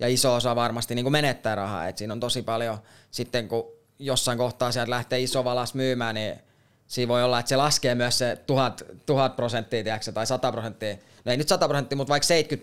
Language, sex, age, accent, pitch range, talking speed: Finnish, male, 20-39, native, 120-145 Hz, 220 wpm